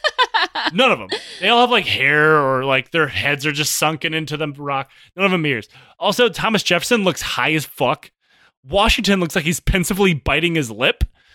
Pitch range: 125-180 Hz